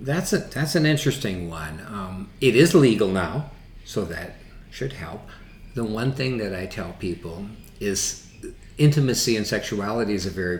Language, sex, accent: English, male, American